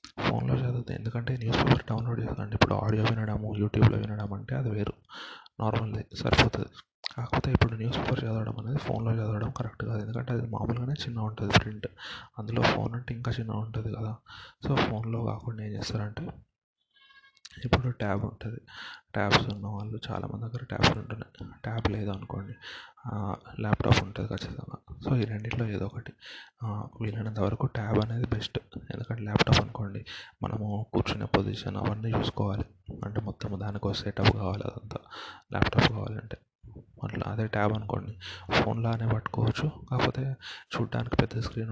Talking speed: 120 wpm